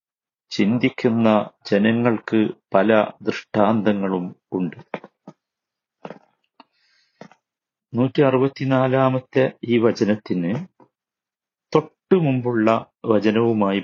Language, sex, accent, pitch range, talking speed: Malayalam, male, native, 115-155 Hz, 50 wpm